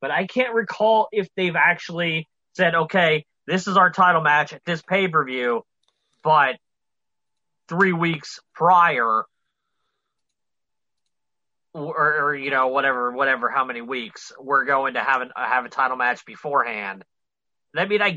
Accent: American